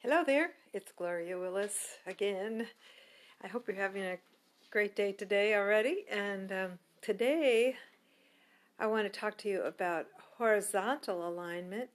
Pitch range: 185-220 Hz